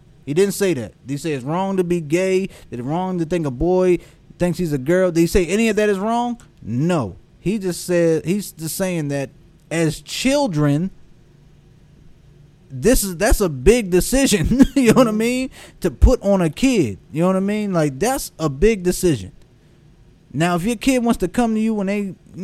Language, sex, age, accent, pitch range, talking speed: English, male, 20-39, American, 140-190 Hz, 205 wpm